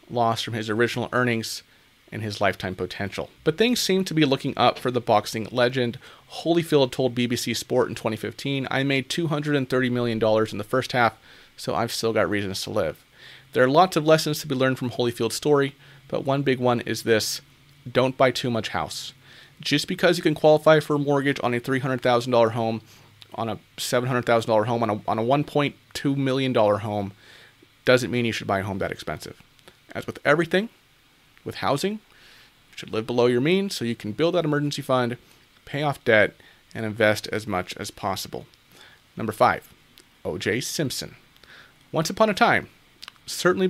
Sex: male